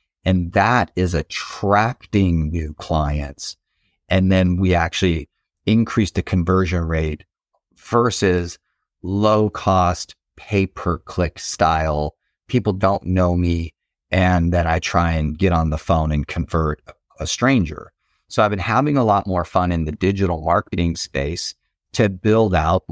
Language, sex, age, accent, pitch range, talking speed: English, male, 30-49, American, 85-105 Hz, 140 wpm